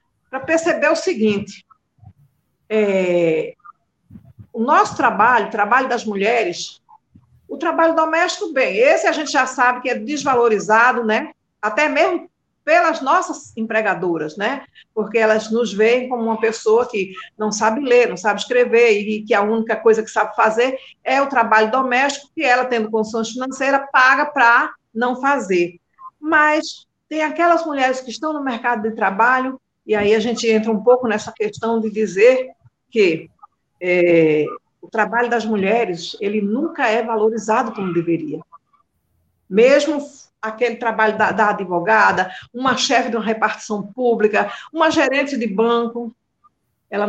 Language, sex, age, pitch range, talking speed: Portuguese, female, 50-69, 215-270 Hz, 145 wpm